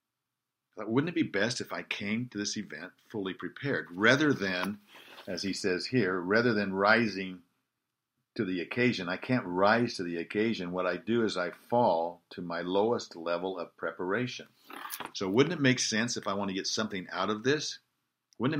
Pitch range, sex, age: 95-115 Hz, male, 50-69